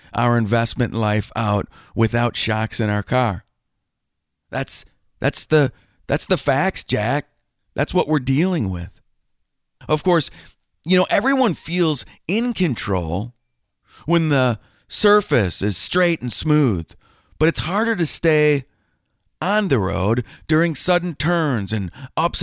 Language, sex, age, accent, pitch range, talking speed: English, male, 40-59, American, 115-180 Hz, 130 wpm